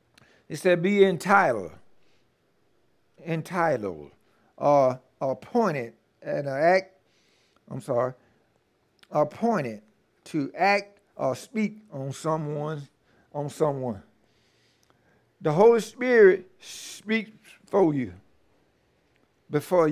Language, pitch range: English, 140-190 Hz